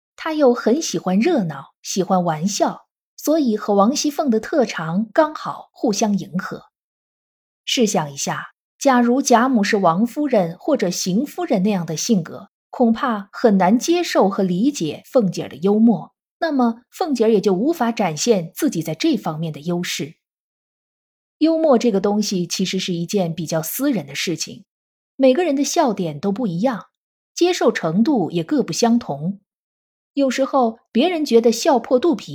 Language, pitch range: Chinese, 185-260 Hz